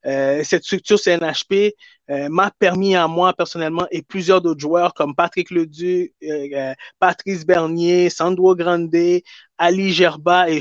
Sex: male